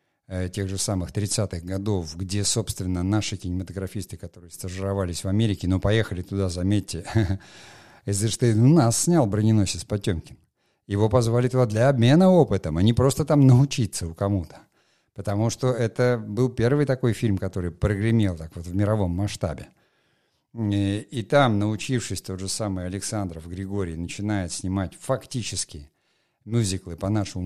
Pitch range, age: 95-120 Hz, 50-69